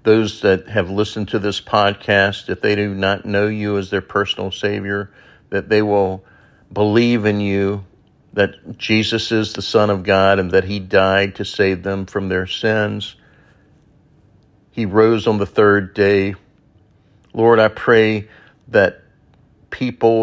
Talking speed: 150 wpm